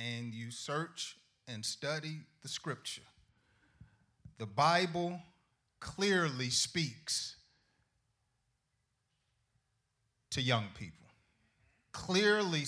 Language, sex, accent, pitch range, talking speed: English, male, American, 120-165 Hz, 70 wpm